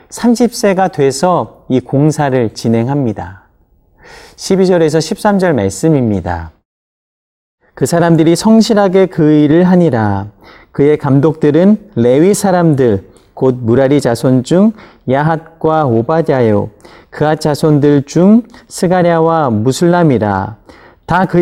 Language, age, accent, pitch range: Korean, 40-59, native, 125-180 Hz